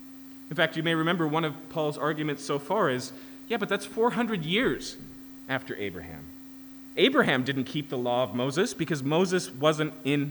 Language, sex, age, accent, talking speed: English, male, 30-49, American, 175 wpm